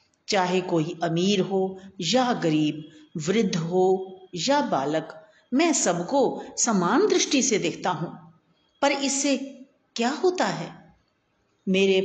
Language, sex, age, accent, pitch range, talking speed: Hindi, female, 50-69, native, 175-245 Hz, 115 wpm